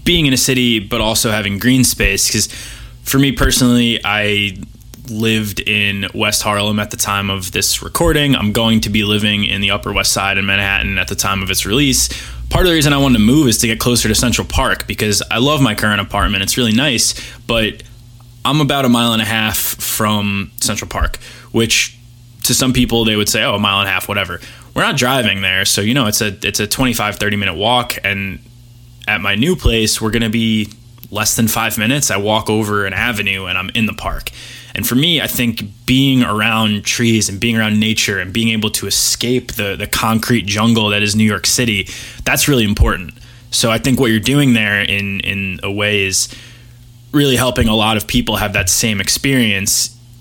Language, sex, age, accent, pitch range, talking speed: English, male, 20-39, American, 105-120 Hz, 215 wpm